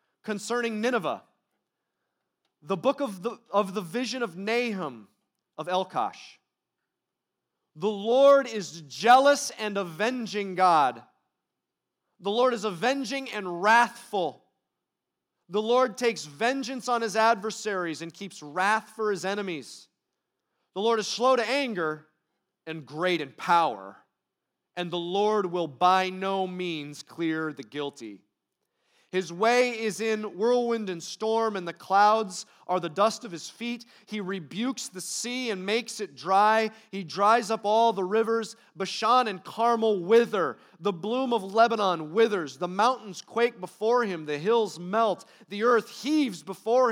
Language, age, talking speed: English, 30-49, 140 wpm